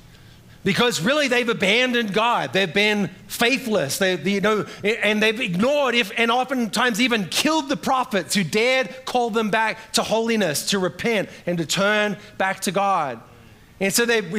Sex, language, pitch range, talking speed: male, English, 175-245 Hz, 165 wpm